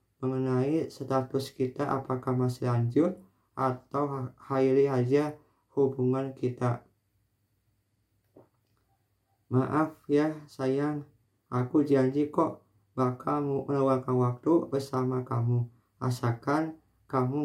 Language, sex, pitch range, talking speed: Indonesian, male, 125-145 Hz, 85 wpm